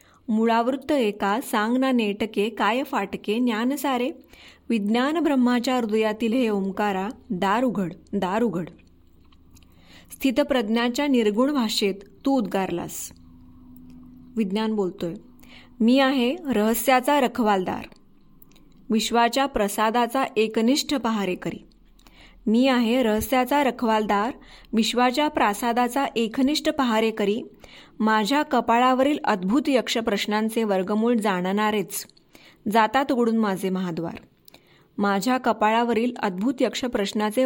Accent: native